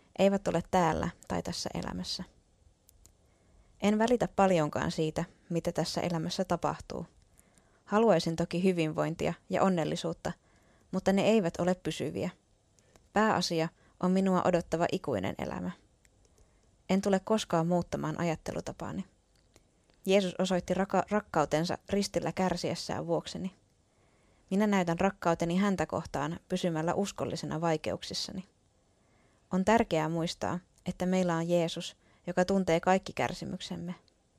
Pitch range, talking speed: 165-195 Hz, 105 wpm